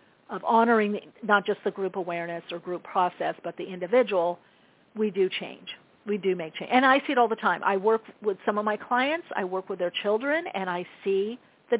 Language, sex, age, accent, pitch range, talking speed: English, female, 50-69, American, 185-225 Hz, 220 wpm